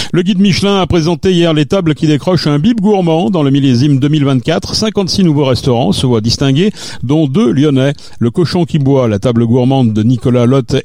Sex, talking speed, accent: male, 200 wpm, French